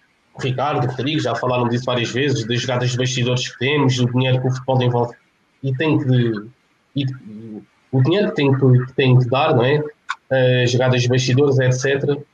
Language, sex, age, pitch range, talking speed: Portuguese, male, 20-39, 125-155 Hz, 185 wpm